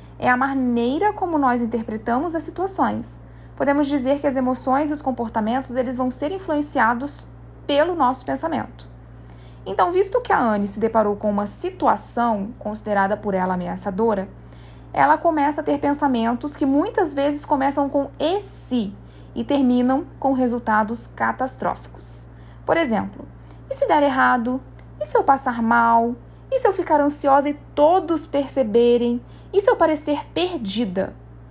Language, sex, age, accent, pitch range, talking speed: Portuguese, female, 10-29, Brazilian, 200-280 Hz, 145 wpm